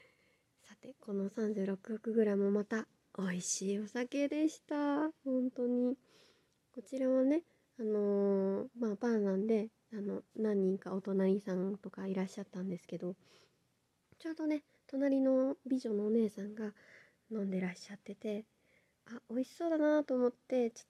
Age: 20-39